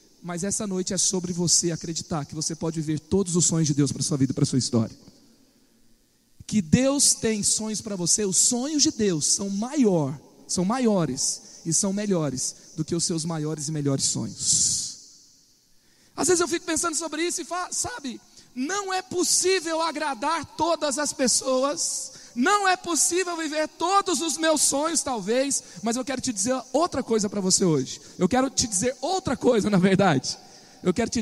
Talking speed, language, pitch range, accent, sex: 185 wpm, Portuguese, 185-280 Hz, Brazilian, male